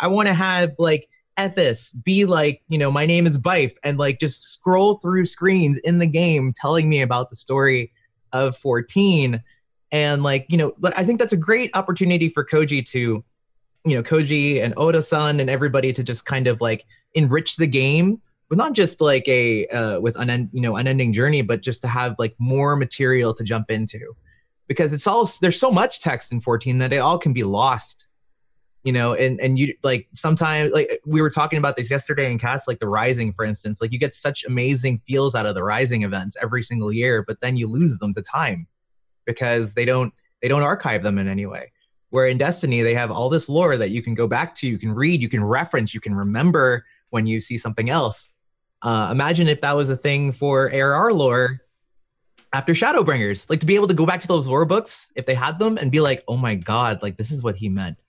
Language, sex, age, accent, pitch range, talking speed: English, male, 30-49, American, 120-160 Hz, 220 wpm